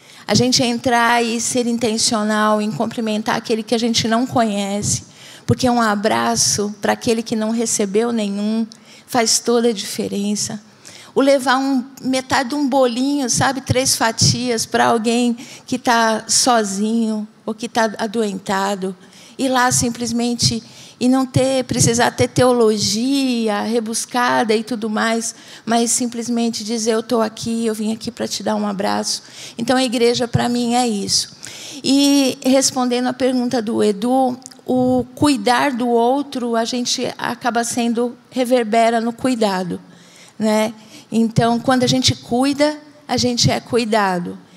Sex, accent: female, Brazilian